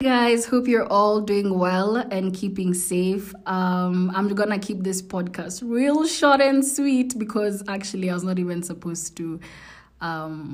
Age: 20-39